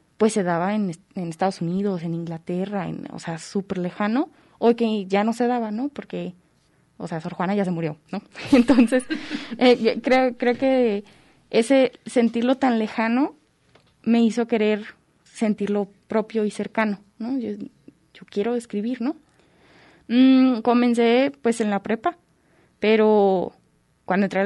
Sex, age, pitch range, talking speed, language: female, 20-39, 190-240 Hz, 155 wpm, Spanish